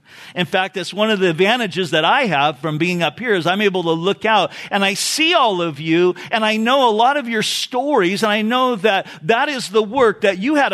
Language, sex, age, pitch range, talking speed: English, male, 50-69, 175-230 Hz, 250 wpm